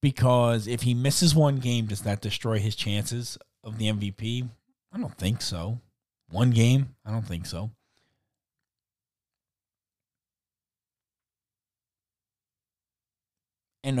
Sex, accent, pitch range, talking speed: male, American, 100-125 Hz, 105 wpm